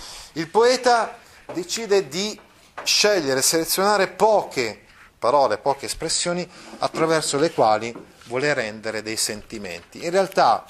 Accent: native